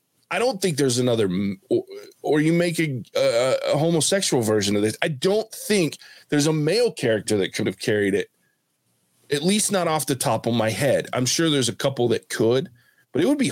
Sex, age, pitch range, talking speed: male, 20-39, 120-160 Hz, 215 wpm